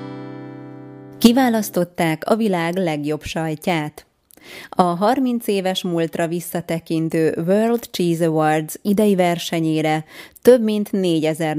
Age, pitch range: 20-39, 155-195 Hz